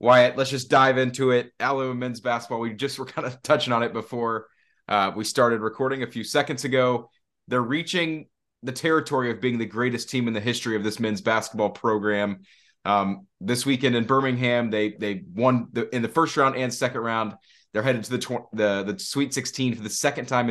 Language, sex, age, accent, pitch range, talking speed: English, male, 20-39, American, 110-130 Hz, 210 wpm